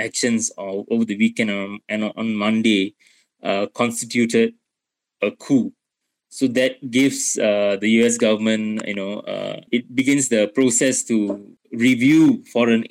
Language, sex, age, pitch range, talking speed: English, male, 20-39, 105-120 Hz, 135 wpm